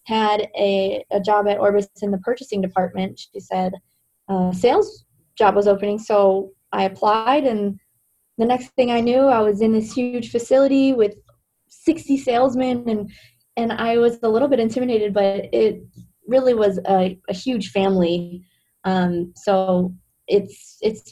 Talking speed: 155 wpm